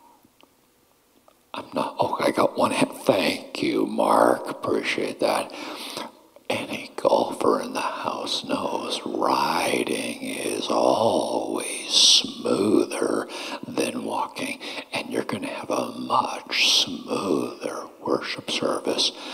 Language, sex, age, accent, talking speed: English, male, 60-79, American, 100 wpm